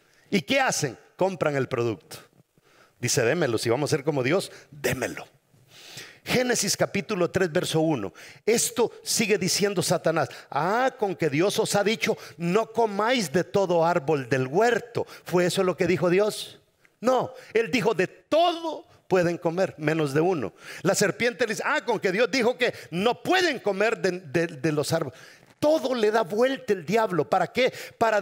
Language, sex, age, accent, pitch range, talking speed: English, male, 50-69, Mexican, 170-260 Hz, 170 wpm